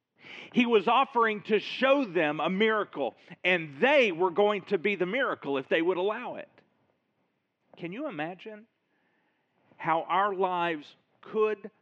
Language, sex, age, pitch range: English, male, 50-69, 155-215 Hz